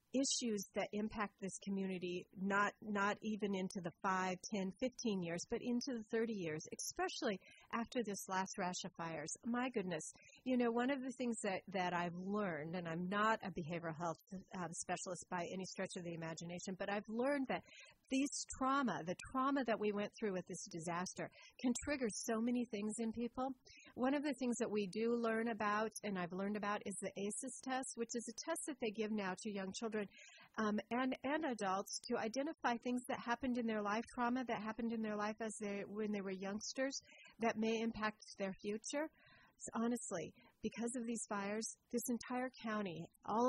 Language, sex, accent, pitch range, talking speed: English, female, American, 190-240 Hz, 195 wpm